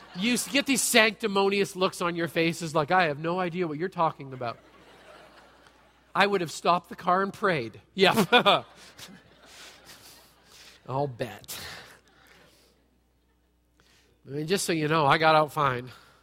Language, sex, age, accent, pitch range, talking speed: English, male, 40-59, American, 135-210 Hz, 140 wpm